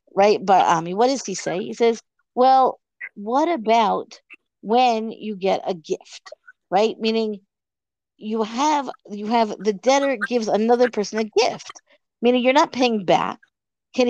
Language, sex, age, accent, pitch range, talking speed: English, female, 50-69, American, 205-255 Hz, 160 wpm